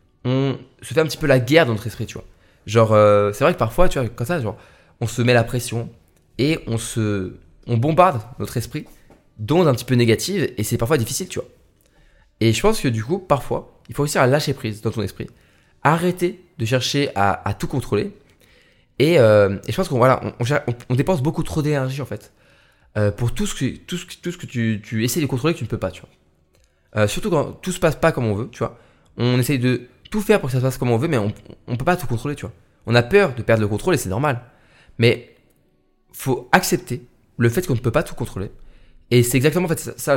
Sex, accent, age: male, French, 20-39